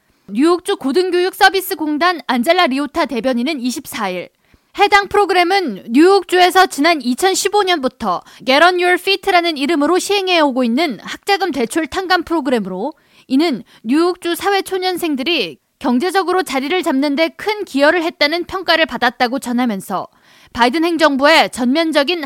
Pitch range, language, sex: 260-360 Hz, Korean, female